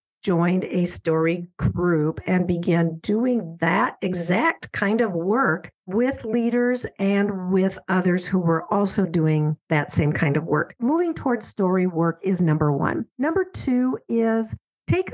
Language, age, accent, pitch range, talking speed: English, 50-69, American, 175-230 Hz, 145 wpm